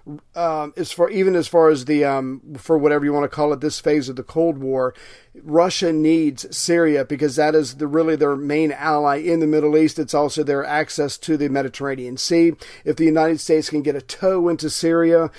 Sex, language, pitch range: male, English, 145-165 Hz